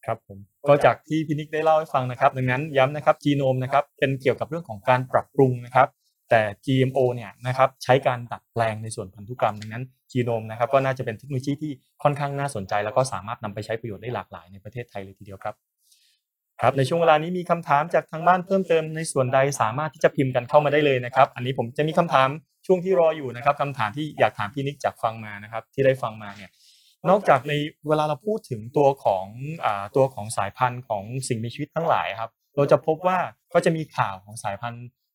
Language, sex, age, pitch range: Thai, male, 20-39, 120-150 Hz